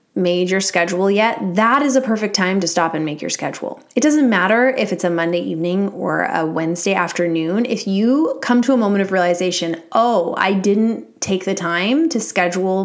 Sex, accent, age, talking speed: female, American, 20-39, 200 wpm